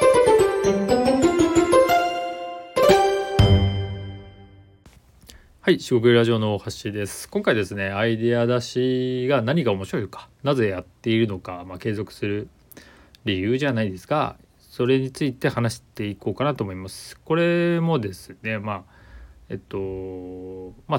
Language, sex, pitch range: Japanese, male, 95-130 Hz